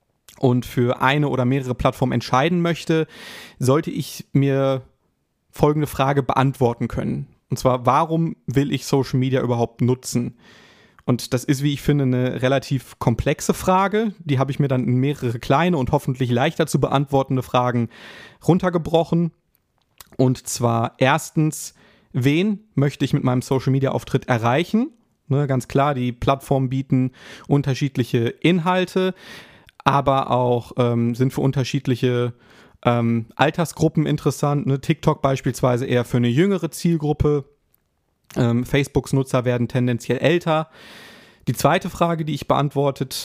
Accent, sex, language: German, male, German